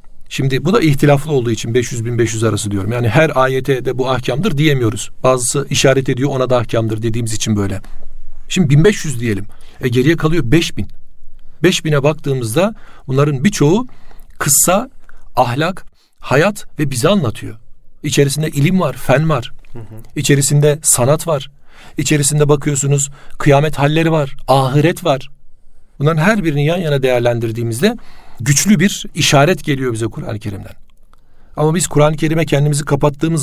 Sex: male